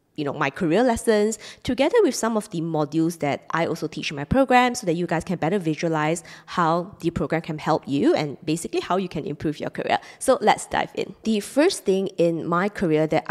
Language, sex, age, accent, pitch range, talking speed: English, female, 20-39, Malaysian, 150-190 Hz, 225 wpm